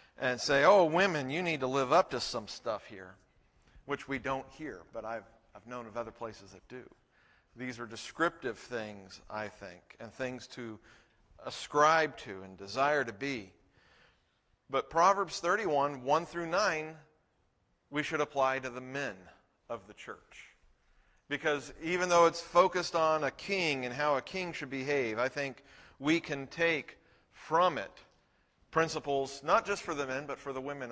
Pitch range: 120-155 Hz